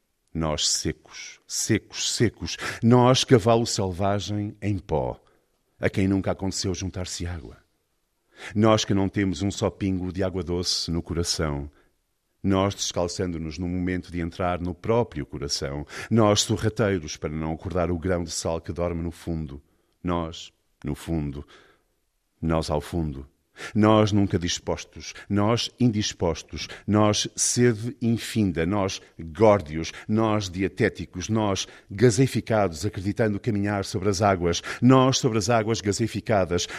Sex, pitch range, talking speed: male, 85-105 Hz, 130 wpm